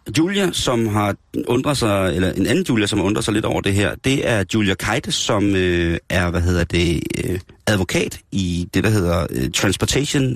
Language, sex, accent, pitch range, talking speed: Danish, male, native, 95-115 Hz, 205 wpm